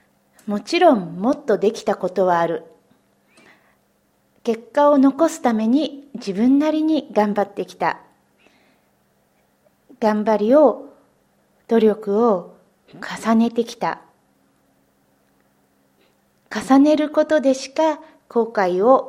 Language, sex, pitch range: Japanese, female, 195-265 Hz